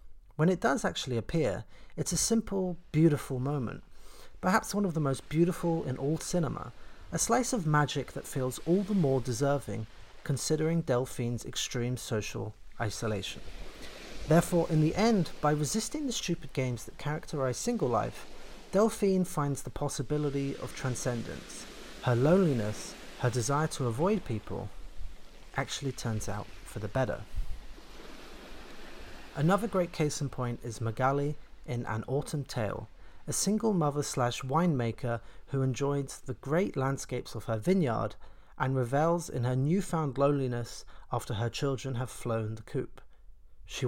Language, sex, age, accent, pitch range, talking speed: English, male, 40-59, British, 120-160 Hz, 140 wpm